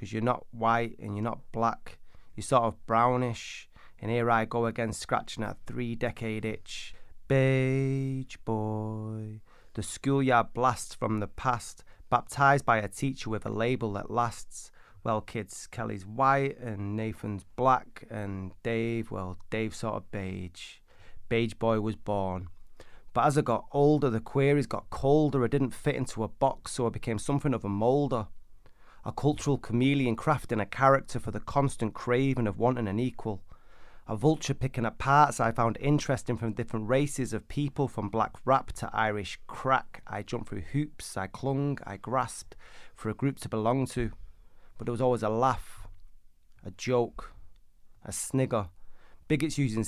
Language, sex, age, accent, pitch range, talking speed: English, male, 30-49, British, 110-135 Hz, 165 wpm